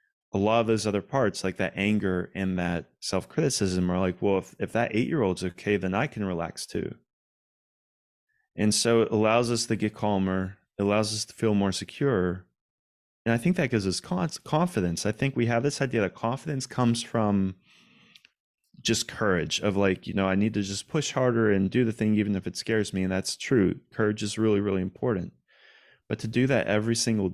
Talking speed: 200 wpm